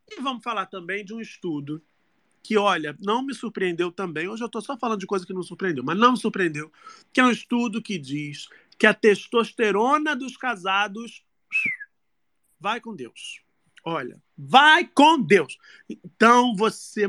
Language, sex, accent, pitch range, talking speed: Portuguese, male, Brazilian, 180-255 Hz, 165 wpm